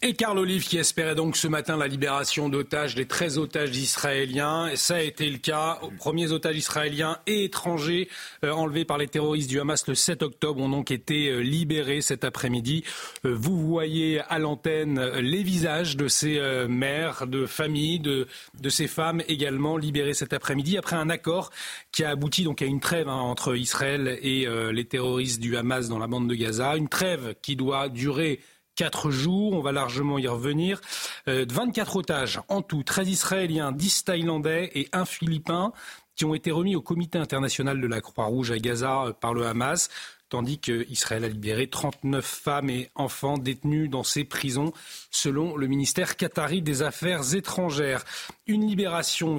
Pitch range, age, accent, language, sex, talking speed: 135-165 Hz, 40-59, French, French, male, 180 wpm